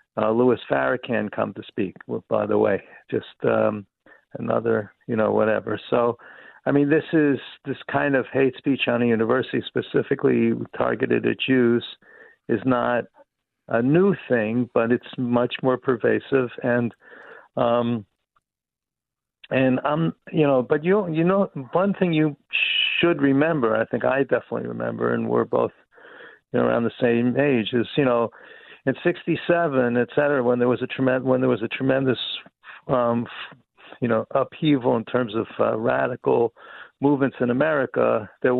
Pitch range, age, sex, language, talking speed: 120-140 Hz, 50-69, male, English, 155 wpm